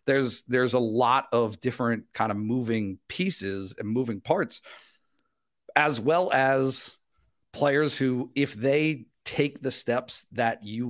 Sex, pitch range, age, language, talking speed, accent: male, 115-135 Hz, 50-69, English, 140 wpm, American